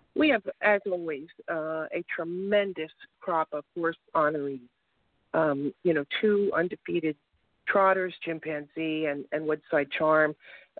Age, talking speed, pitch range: 50-69, 120 wpm, 160-195 Hz